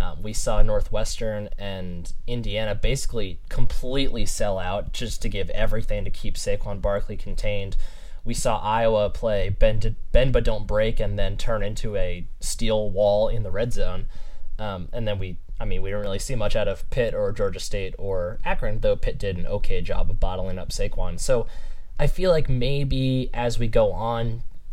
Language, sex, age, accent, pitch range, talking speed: English, male, 10-29, American, 100-125 Hz, 185 wpm